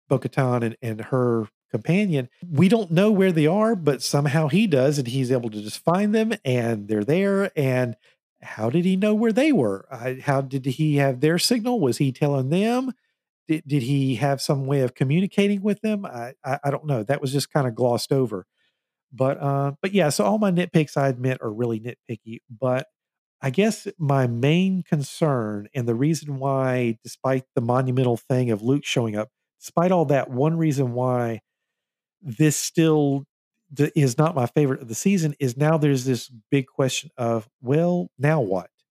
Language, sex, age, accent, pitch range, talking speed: English, male, 50-69, American, 125-160 Hz, 190 wpm